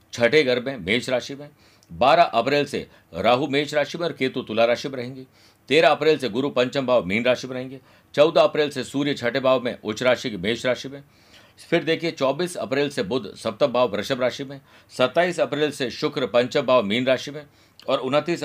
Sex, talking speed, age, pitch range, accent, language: male, 210 wpm, 50-69, 115-145 Hz, native, Hindi